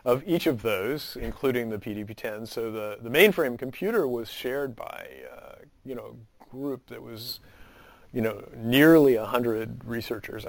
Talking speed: 155 wpm